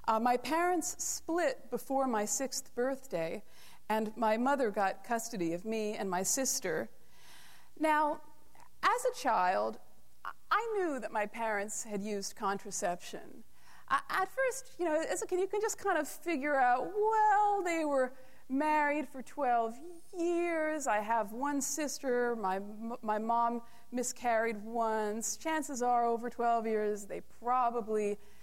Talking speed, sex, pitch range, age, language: 140 wpm, female, 220-295 Hz, 40-59, English